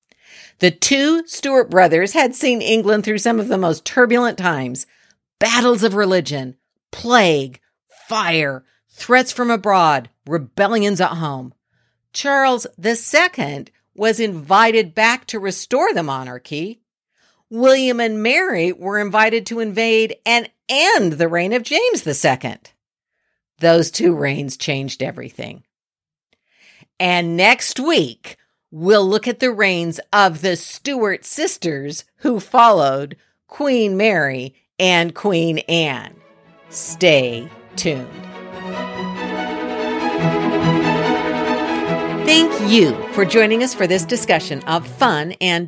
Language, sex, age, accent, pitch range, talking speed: English, female, 50-69, American, 145-225 Hz, 115 wpm